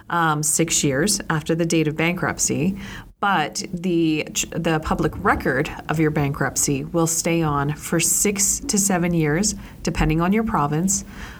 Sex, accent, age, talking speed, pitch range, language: female, American, 30-49, 150 wpm, 150-185 Hz, English